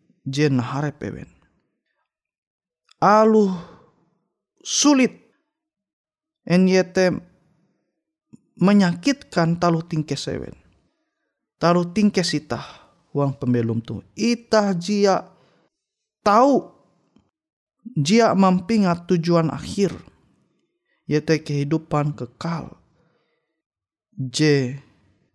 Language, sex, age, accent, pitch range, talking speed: Indonesian, male, 20-39, native, 140-205 Hz, 60 wpm